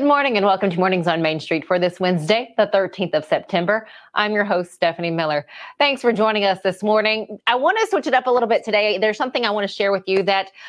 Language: English